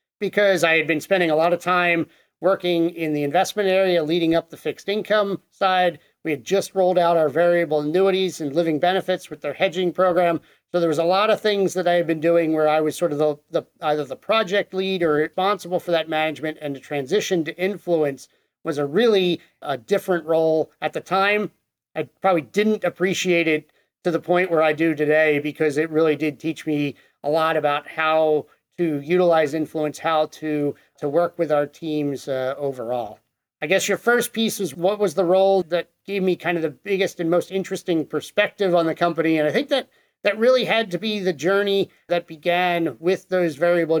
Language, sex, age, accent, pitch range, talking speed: English, male, 40-59, American, 155-185 Hz, 205 wpm